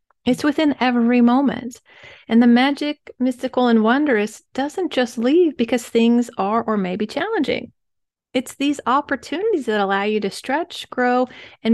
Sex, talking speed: female, 155 wpm